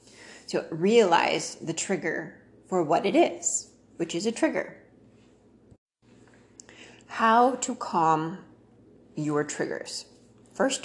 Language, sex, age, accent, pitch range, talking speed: English, female, 30-49, American, 165-190 Hz, 100 wpm